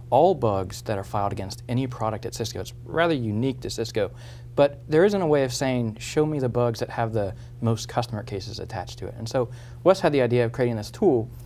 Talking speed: 235 wpm